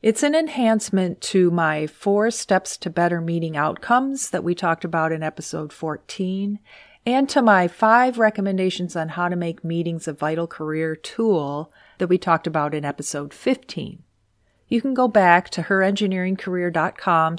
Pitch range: 155-195 Hz